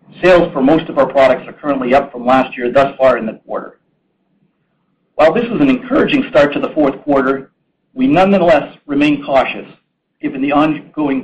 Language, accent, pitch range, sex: English, American, 135-190 Hz, male